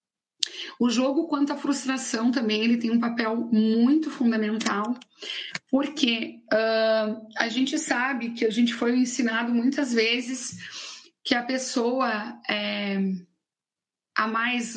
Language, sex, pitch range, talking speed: Portuguese, female, 215-255 Hz, 115 wpm